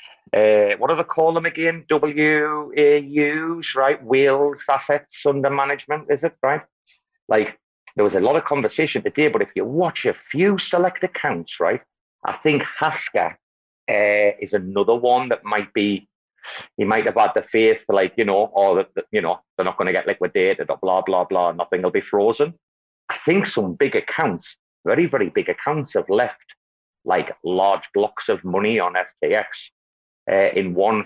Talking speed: 180 wpm